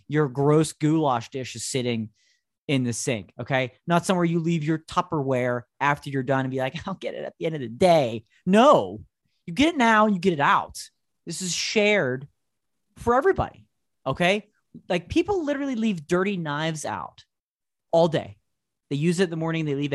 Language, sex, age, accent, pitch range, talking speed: English, male, 30-49, American, 105-160 Hz, 195 wpm